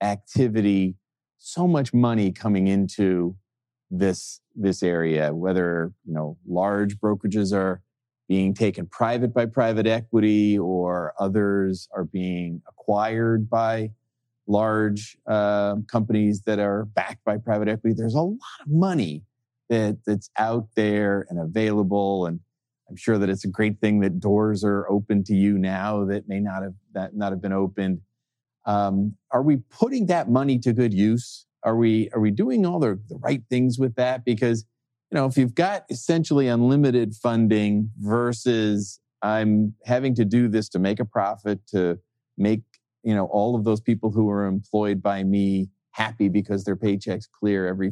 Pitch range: 100-120 Hz